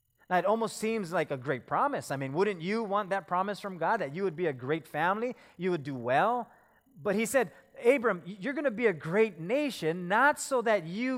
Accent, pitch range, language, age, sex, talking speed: American, 175-235 Hz, English, 30-49, male, 225 wpm